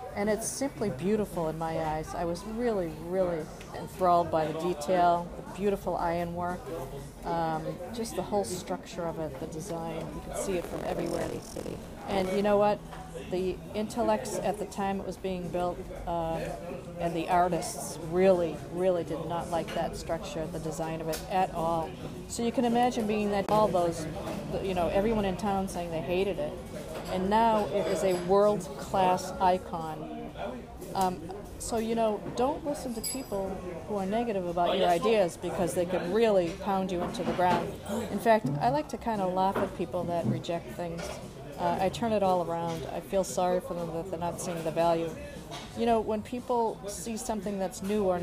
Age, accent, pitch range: 40-59, American, 170-205 Hz